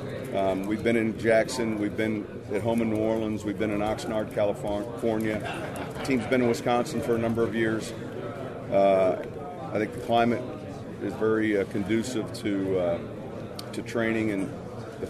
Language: English